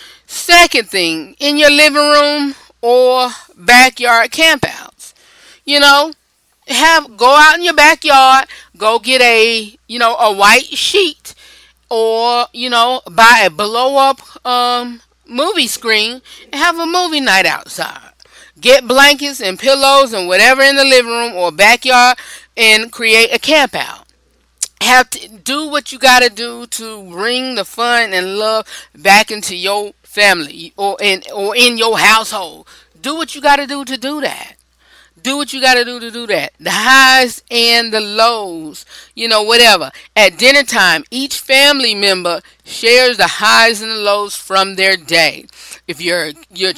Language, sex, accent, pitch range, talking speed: English, female, American, 200-270 Hz, 160 wpm